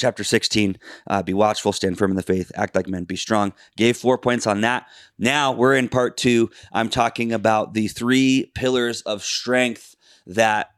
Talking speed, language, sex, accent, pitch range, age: 190 wpm, English, male, American, 100-125 Hz, 30-49